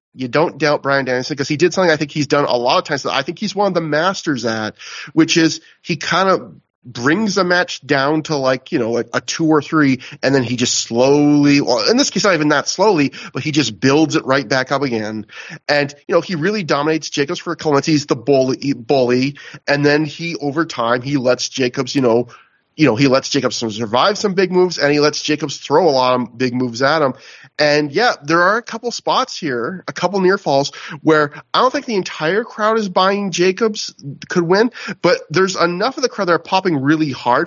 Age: 30-49